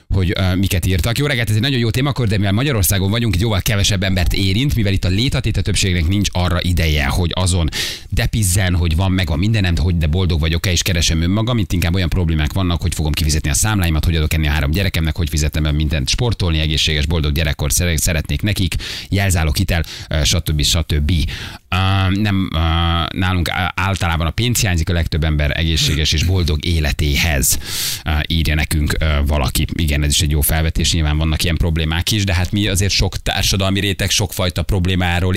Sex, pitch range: male, 80-100 Hz